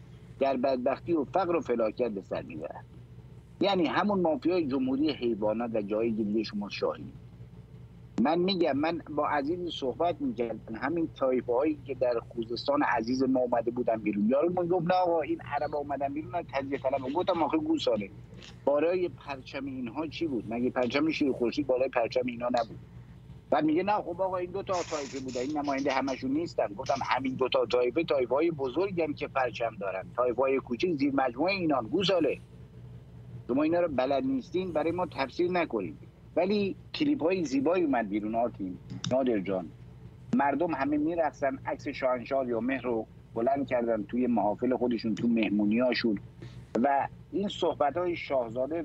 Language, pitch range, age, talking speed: English, 115-165 Hz, 50-69, 155 wpm